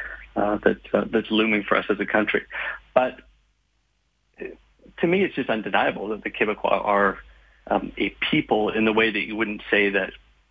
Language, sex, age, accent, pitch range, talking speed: English, male, 40-59, American, 100-115 Hz, 175 wpm